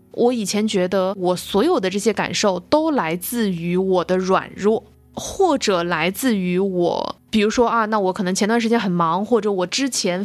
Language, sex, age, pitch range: Chinese, female, 20-39, 180-235 Hz